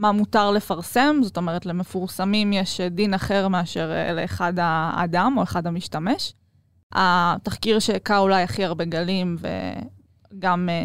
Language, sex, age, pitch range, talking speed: Hebrew, female, 20-39, 175-210 Hz, 120 wpm